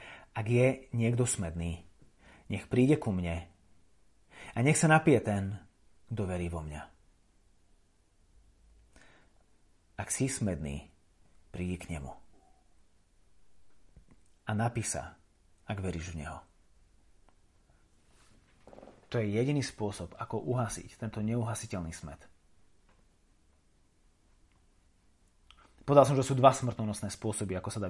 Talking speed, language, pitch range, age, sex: 110 wpm, Slovak, 90-125 Hz, 30-49, male